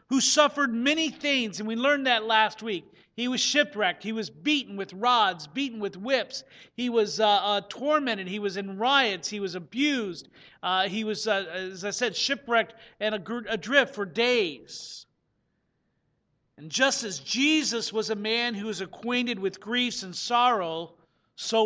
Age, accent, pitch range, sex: 50-69, American, 205-260 Hz, male